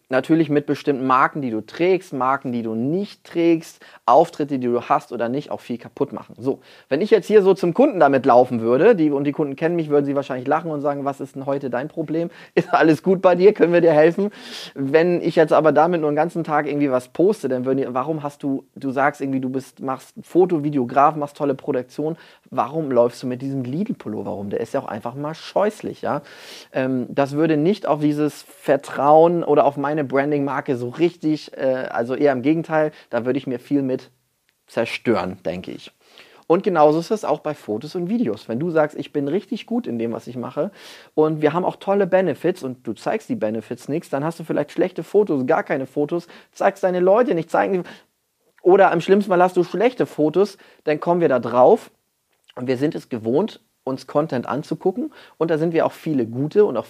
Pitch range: 130-170 Hz